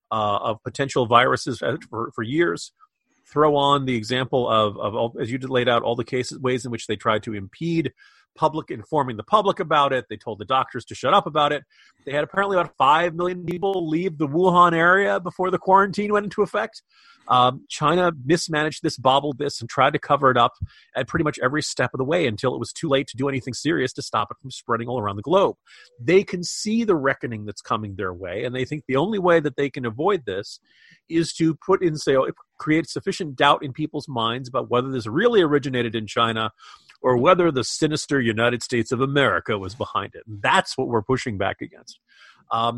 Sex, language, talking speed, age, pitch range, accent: male, English, 215 wpm, 40-59, 120-165 Hz, American